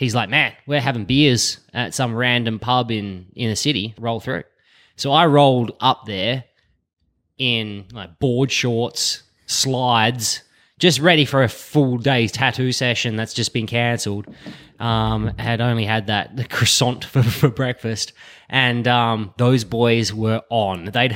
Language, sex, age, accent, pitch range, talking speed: English, male, 20-39, Australian, 110-130 Hz, 155 wpm